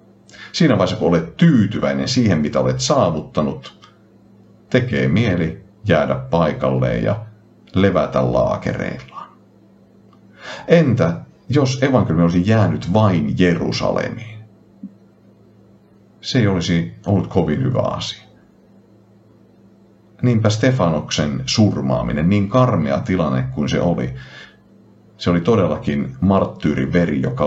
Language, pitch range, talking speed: Finnish, 65-105 Hz, 95 wpm